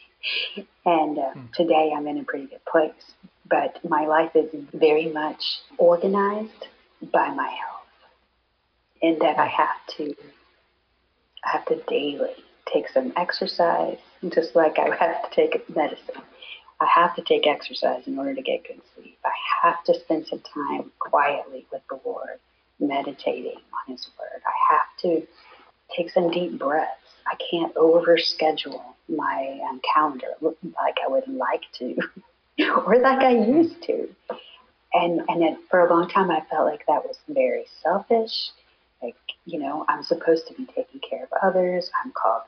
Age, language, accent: 40-59, English, American